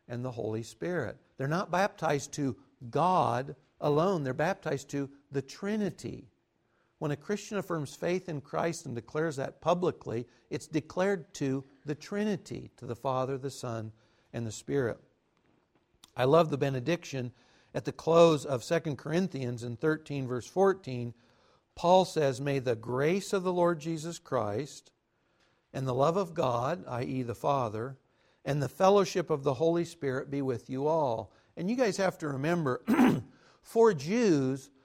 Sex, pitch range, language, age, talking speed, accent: male, 135-180 Hz, English, 60-79, 155 wpm, American